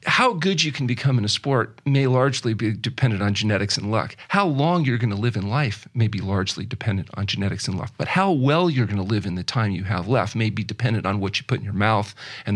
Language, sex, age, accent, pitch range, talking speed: English, male, 40-59, American, 110-140 Hz, 270 wpm